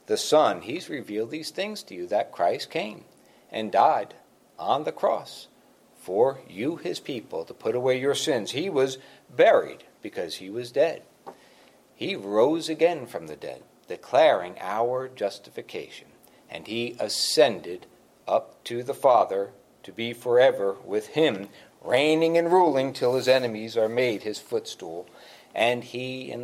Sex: male